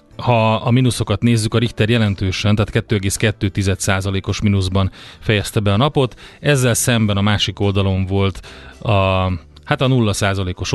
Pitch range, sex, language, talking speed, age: 95-115 Hz, male, Hungarian, 135 wpm, 30-49